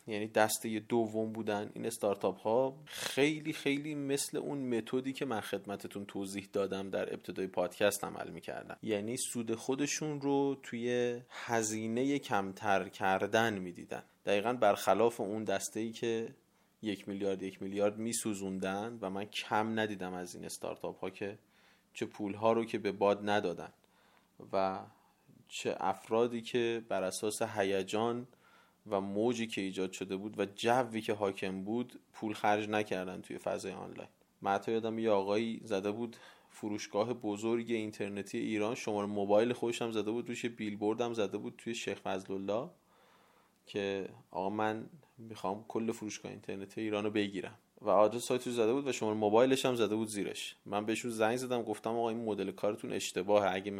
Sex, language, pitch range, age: male, Persian, 100-120 Hz, 30-49